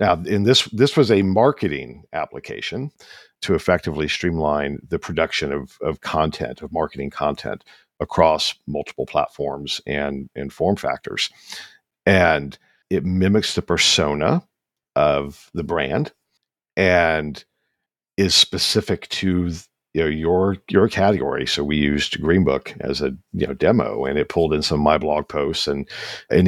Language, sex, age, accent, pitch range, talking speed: English, male, 50-69, American, 75-105 Hz, 145 wpm